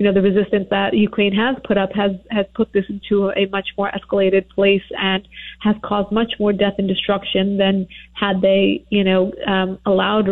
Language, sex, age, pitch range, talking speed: English, female, 30-49, 190-215 Hz, 200 wpm